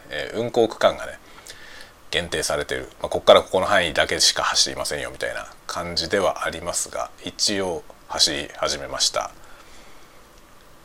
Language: Japanese